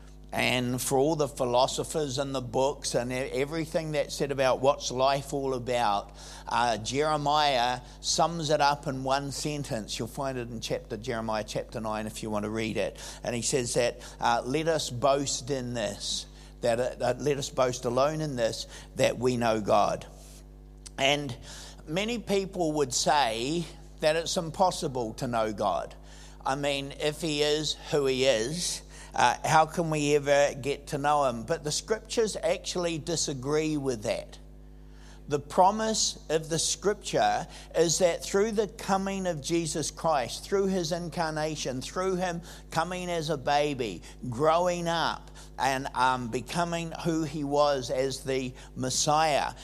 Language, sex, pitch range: English, male, 135-170 Hz